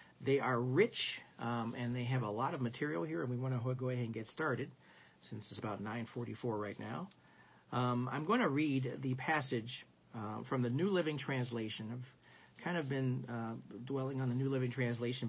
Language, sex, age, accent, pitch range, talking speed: English, male, 40-59, American, 115-140 Hz, 200 wpm